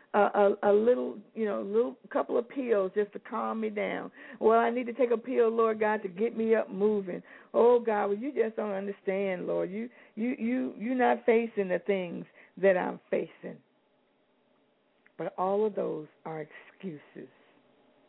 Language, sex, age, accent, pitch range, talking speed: English, female, 60-79, American, 180-225 Hz, 185 wpm